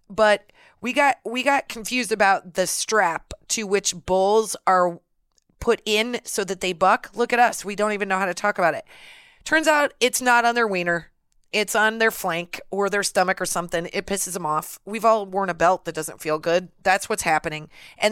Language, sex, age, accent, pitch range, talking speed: English, female, 30-49, American, 175-225 Hz, 210 wpm